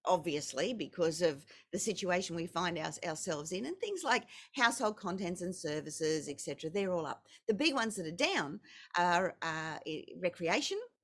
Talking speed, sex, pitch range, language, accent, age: 165 wpm, female, 170-235 Hz, English, Australian, 50-69